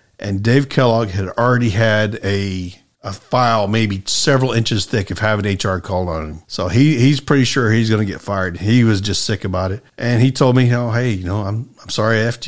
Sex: male